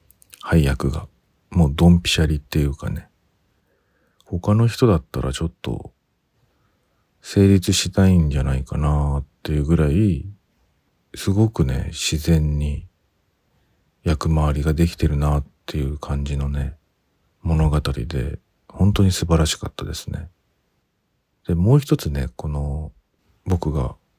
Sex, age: male, 40-59